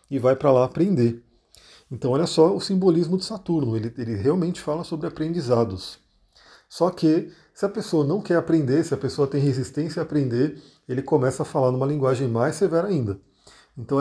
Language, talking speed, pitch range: Portuguese, 185 wpm, 125-165 Hz